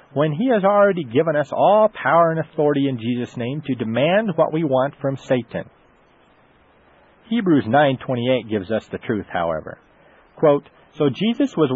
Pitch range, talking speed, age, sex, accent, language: 125-170 Hz, 160 wpm, 40-59, male, American, English